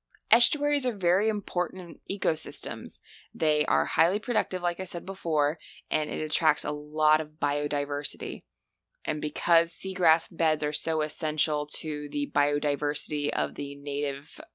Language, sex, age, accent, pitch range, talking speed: English, female, 20-39, American, 150-170 Hz, 135 wpm